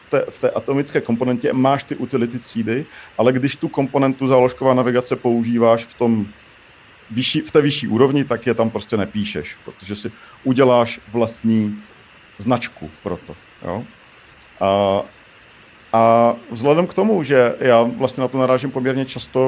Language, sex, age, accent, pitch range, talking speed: Czech, male, 40-59, native, 115-135 Hz, 155 wpm